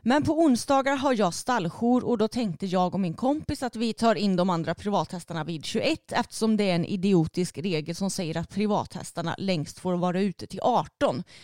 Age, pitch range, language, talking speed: 30-49, 175-225 Hz, Swedish, 200 wpm